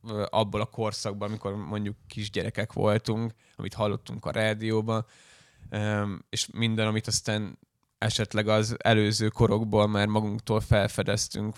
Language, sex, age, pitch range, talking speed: Hungarian, male, 10-29, 105-115 Hz, 115 wpm